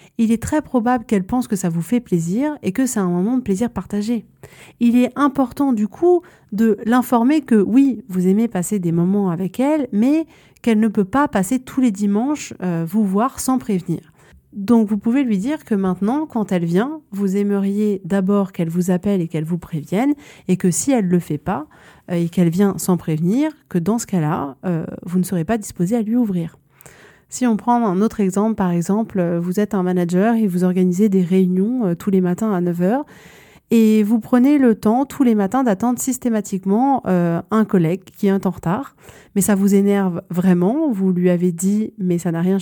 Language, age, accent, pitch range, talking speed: French, 30-49, French, 185-240 Hz, 210 wpm